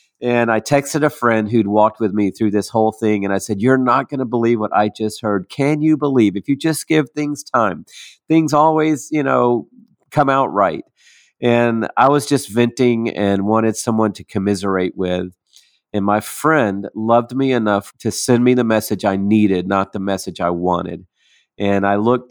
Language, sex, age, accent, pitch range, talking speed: English, male, 40-59, American, 100-130 Hz, 195 wpm